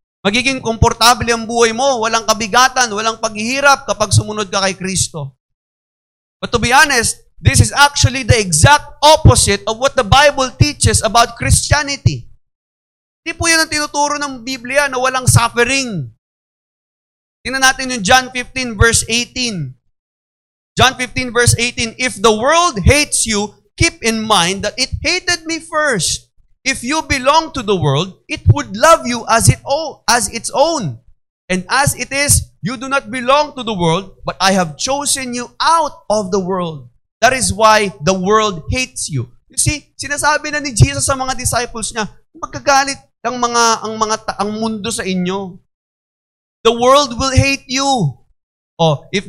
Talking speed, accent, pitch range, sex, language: 165 wpm, native, 200-275 Hz, male, Filipino